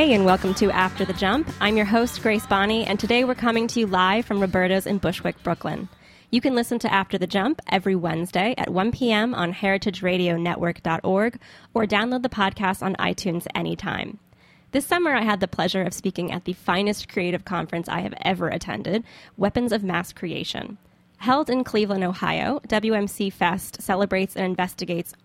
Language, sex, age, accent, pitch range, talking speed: English, female, 10-29, American, 180-220 Hz, 180 wpm